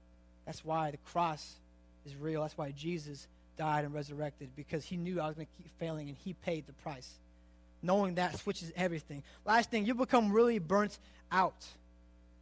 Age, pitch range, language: 20-39, 140-210 Hz, English